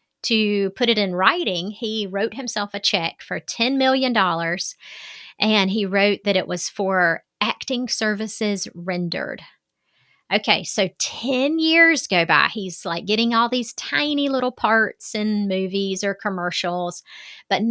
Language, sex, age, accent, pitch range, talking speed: English, female, 30-49, American, 190-250 Hz, 140 wpm